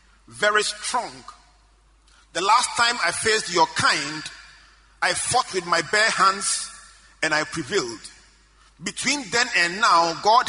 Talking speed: 130 wpm